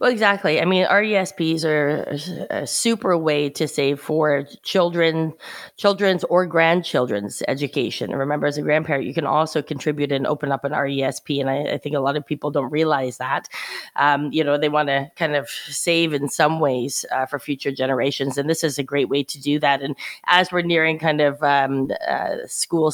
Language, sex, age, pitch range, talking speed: English, female, 20-39, 140-165 Hz, 200 wpm